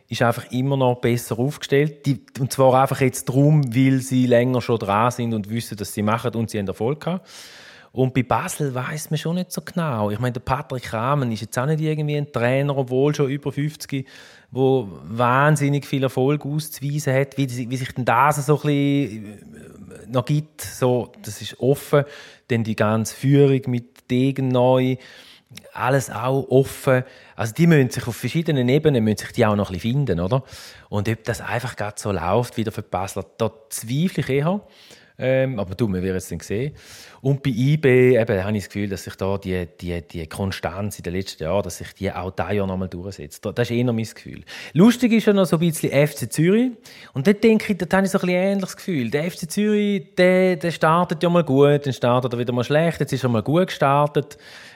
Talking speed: 210 wpm